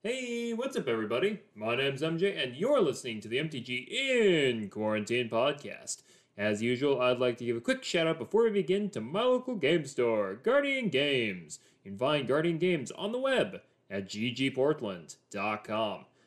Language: English